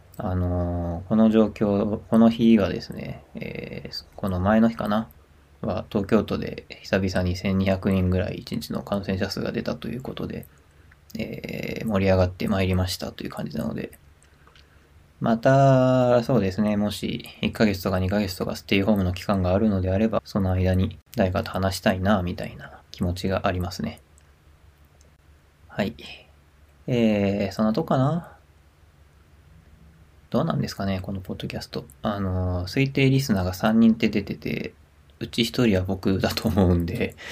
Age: 20-39